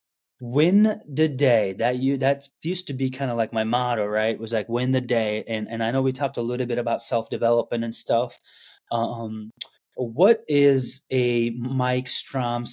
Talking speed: 190 wpm